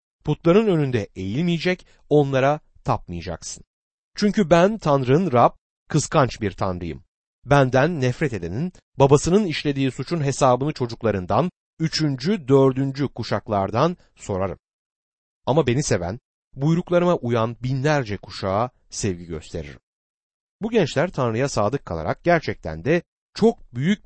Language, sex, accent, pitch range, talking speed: Turkish, male, native, 100-170 Hz, 105 wpm